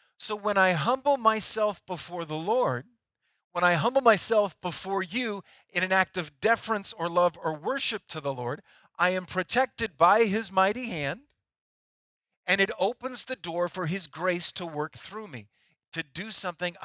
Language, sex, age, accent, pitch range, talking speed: English, male, 40-59, American, 165-225 Hz, 170 wpm